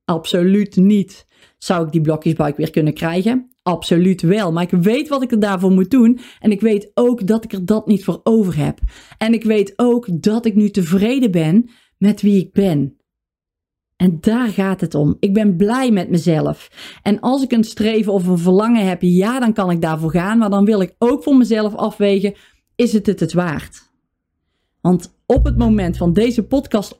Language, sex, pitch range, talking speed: Dutch, female, 180-235 Hz, 200 wpm